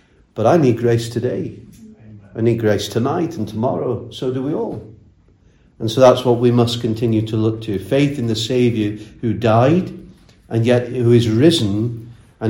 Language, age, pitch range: English, 40-59, 105-130 Hz